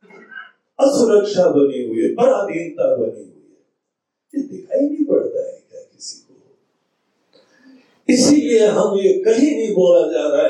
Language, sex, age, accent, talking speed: Hindi, male, 60-79, native, 125 wpm